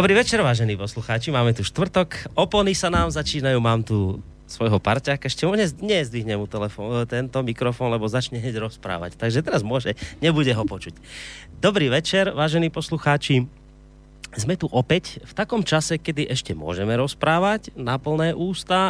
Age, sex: 30-49, male